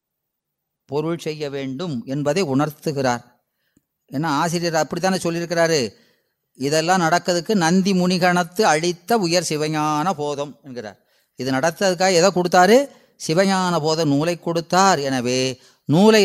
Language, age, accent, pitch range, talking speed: Tamil, 30-49, native, 145-195 Hz, 105 wpm